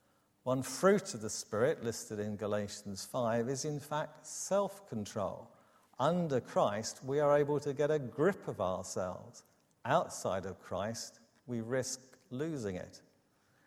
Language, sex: English, male